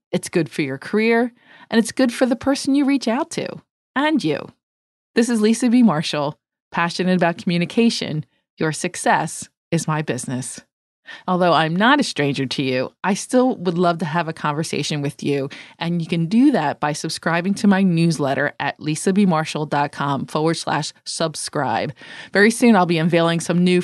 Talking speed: 175 wpm